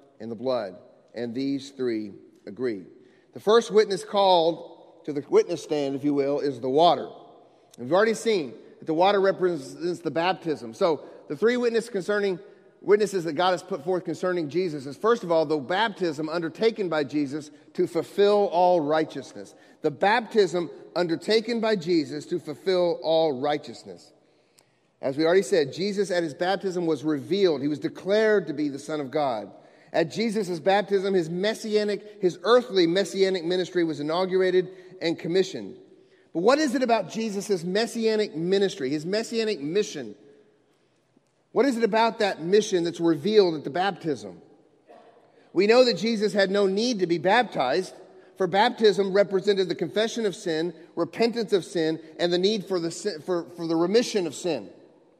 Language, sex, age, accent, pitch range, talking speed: English, male, 40-59, American, 160-205 Hz, 165 wpm